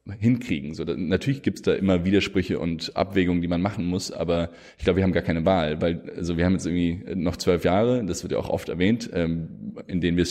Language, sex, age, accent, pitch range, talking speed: German, male, 20-39, German, 85-95 Hz, 250 wpm